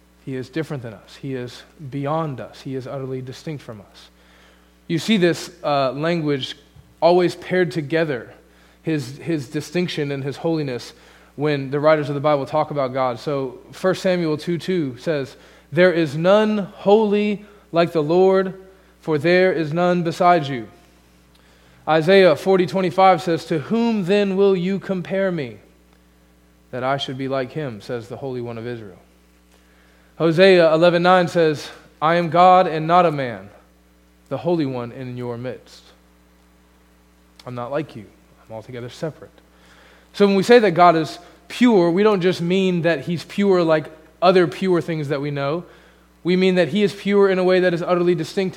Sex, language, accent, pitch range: male, English, American, 120-180 Hz